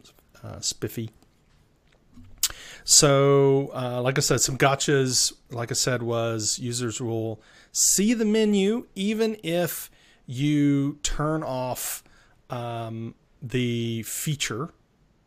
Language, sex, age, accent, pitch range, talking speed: English, male, 30-49, American, 115-145 Hz, 100 wpm